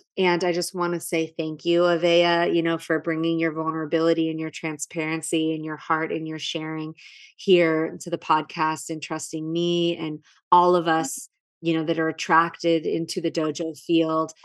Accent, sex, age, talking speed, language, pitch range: American, female, 30-49, 185 wpm, English, 155-170 Hz